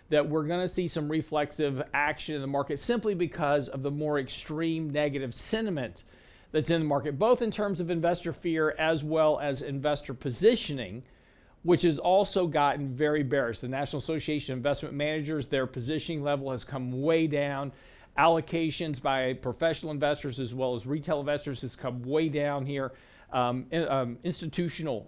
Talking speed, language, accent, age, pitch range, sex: 170 wpm, English, American, 50-69, 135-165 Hz, male